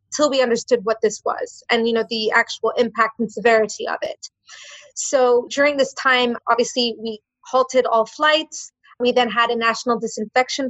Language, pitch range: English, 225-255 Hz